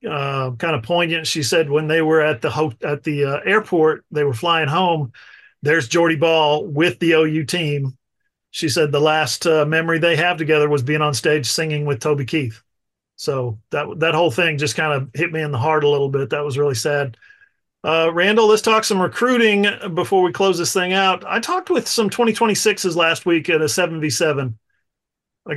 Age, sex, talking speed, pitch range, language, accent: 40-59, male, 205 wpm, 145-175 Hz, English, American